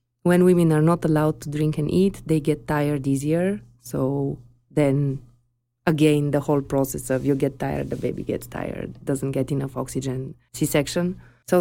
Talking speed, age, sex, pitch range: 170 wpm, 20-39, female, 140-165 Hz